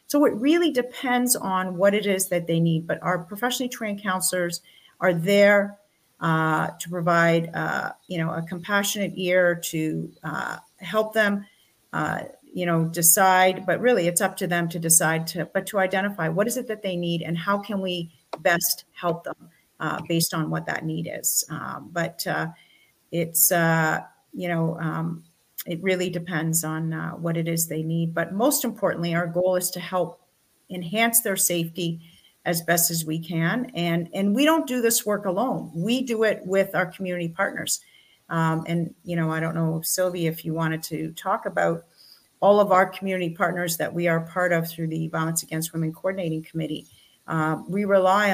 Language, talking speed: English, 185 wpm